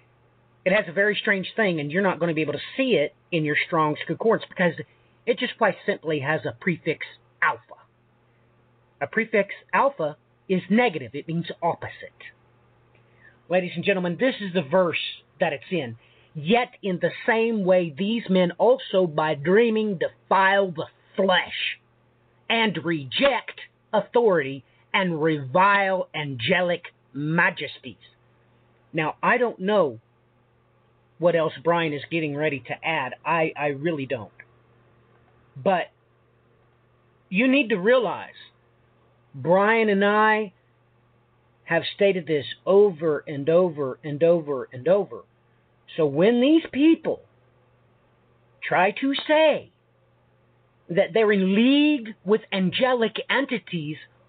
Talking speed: 125 wpm